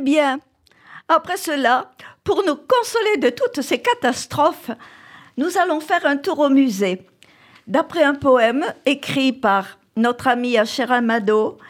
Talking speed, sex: 140 wpm, female